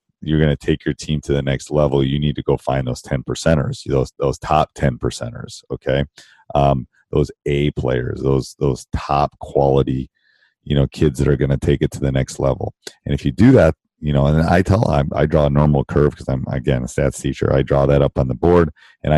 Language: English